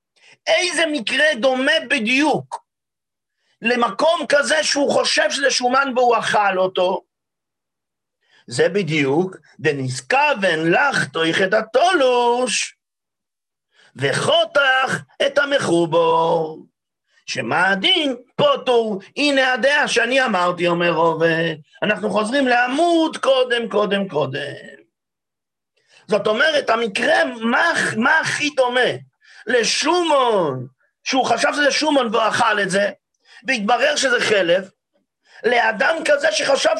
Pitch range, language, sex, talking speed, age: 215-295 Hz, English, male, 95 wpm, 50-69